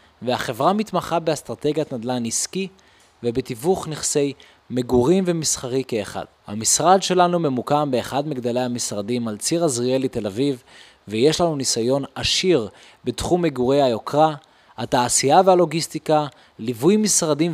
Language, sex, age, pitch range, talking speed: Hebrew, male, 20-39, 125-170 Hz, 110 wpm